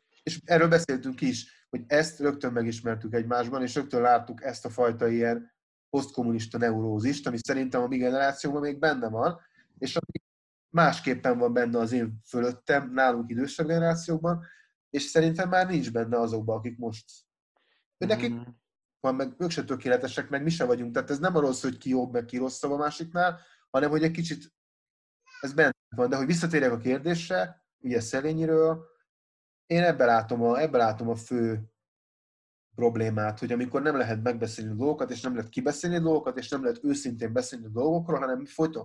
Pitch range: 120-160 Hz